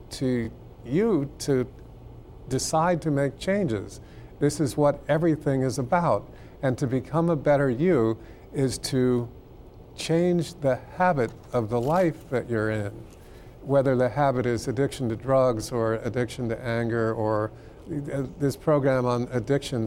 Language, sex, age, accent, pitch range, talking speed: English, male, 50-69, American, 115-145 Hz, 140 wpm